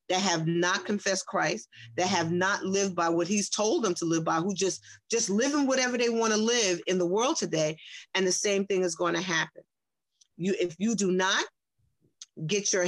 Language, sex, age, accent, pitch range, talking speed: English, female, 40-59, American, 175-235 Hz, 215 wpm